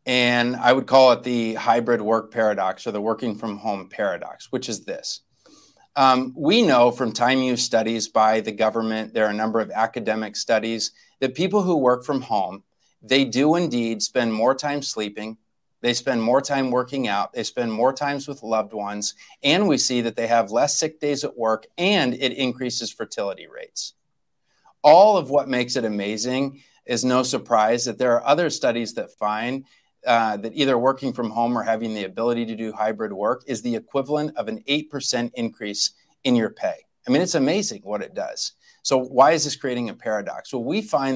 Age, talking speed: 30-49, 195 wpm